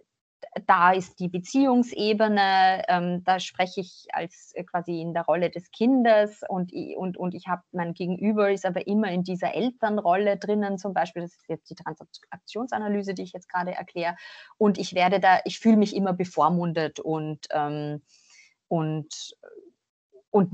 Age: 30-49